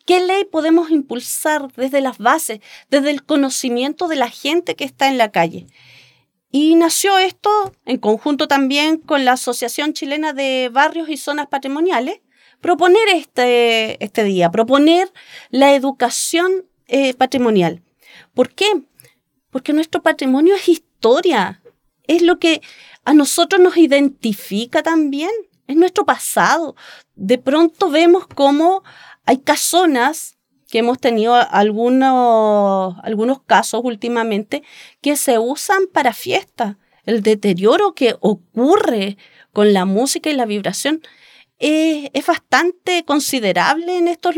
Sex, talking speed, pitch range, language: female, 125 wpm, 240-330 Hz, Spanish